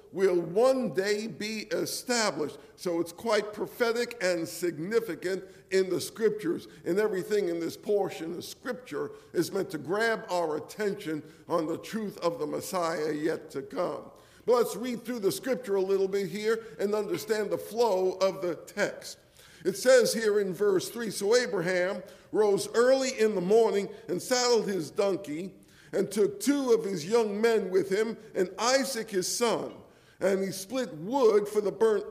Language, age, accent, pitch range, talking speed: English, 50-69, American, 170-230 Hz, 170 wpm